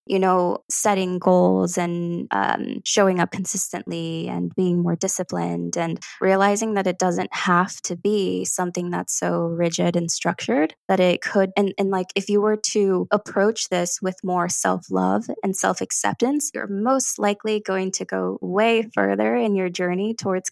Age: 20-39